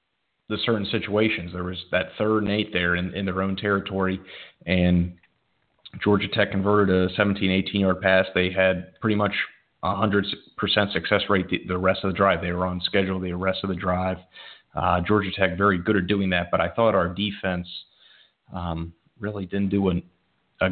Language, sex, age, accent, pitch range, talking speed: English, male, 30-49, American, 90-105 Hz, 190 wpm